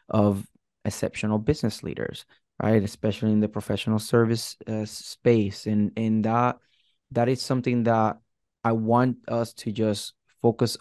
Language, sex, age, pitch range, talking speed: English, male, 20-39, 105-115 Hz, 140 wpm